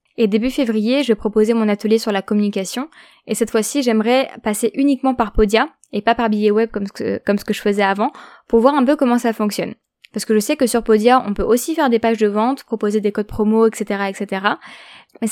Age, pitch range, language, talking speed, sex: 20-39, 210-240 Hz, French, 240 wpm, female